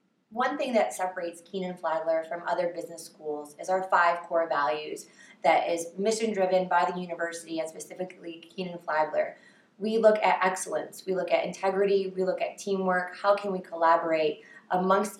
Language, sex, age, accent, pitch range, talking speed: English, female, 20-39, American, 180-210 Hz, 160 wpm